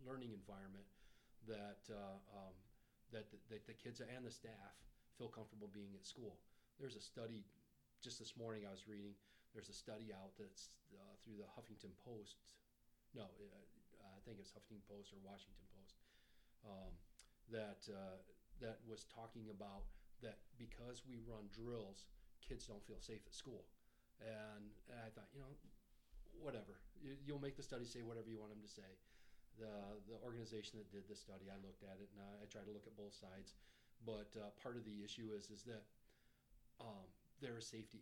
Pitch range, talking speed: 105-125 Hz, 180 wpm